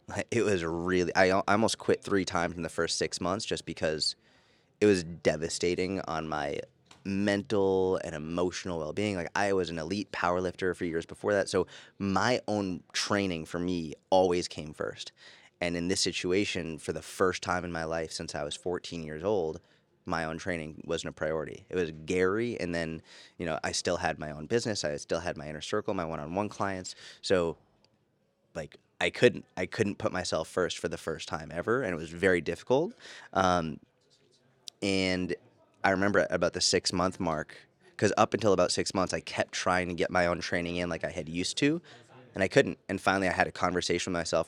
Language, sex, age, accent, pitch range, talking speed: English, male, 20-39, American, 85-100 Hz, 200 wpm